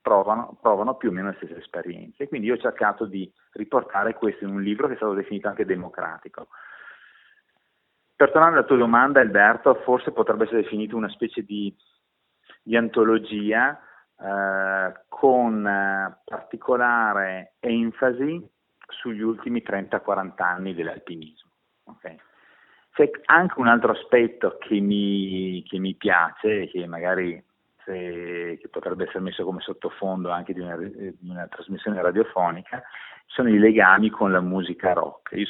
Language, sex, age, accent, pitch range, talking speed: Italian, male, 30-49, native, 95-110 Hz, 140 wpm